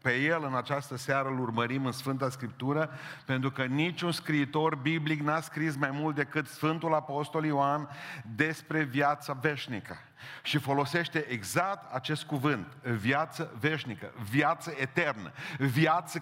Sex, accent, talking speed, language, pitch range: male, native, 135 wpm, Romanian, 130-160 Hz